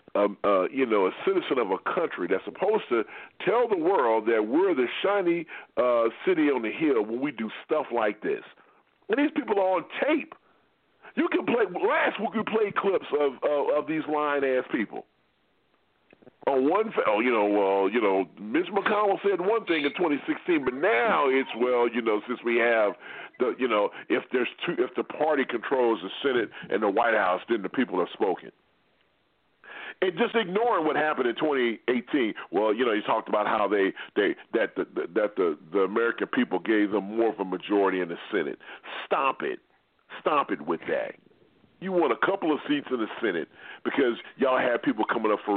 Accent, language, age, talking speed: American, English, 40-59, 200 wpm